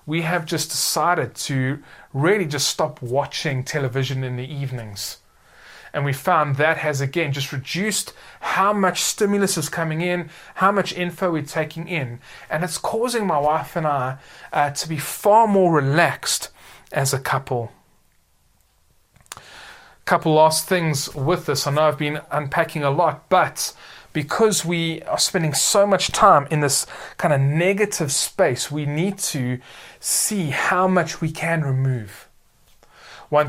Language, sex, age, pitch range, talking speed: English, male, 20-39, 140-175 Hz, 150 wpm